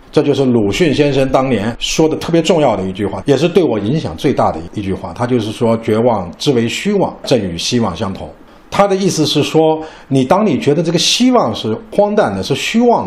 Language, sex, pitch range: Chinese, male, 140-225 Hz